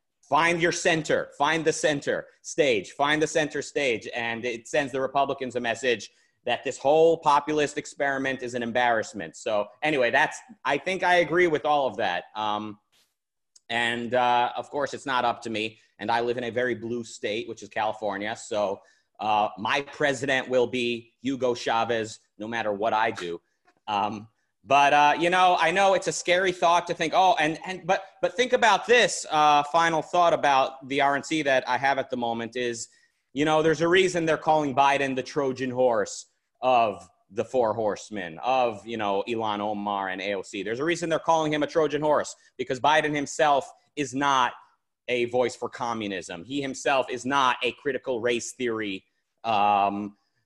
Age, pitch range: 30-49, 115-155 Hz